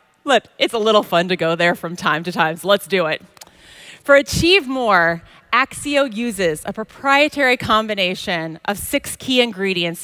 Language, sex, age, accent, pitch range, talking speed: English, female, 30-49, American, 195-265 Hz, 165 wpm